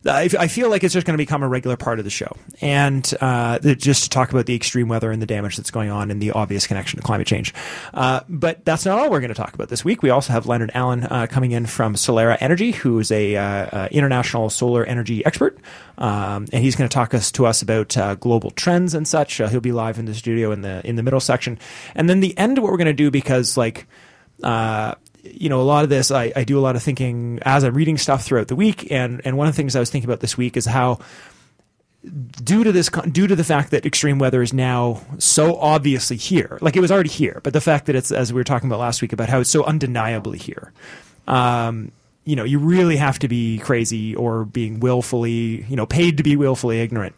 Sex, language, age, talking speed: male, English, 30-49, 255 wpm